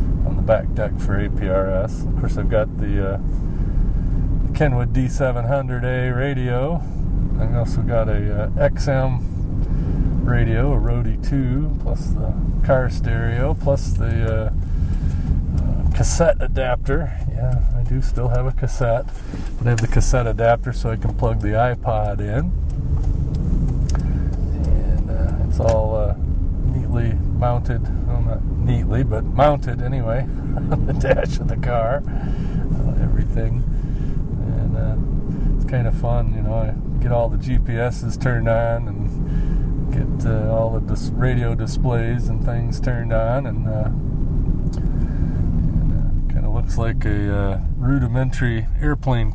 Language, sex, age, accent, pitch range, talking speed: English, male, 40-59, American, 90-125 Hz, 135 wpm